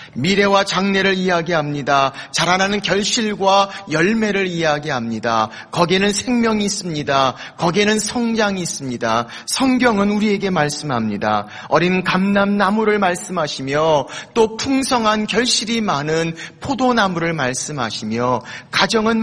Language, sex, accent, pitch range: Korean, male, native, 135-205 Hz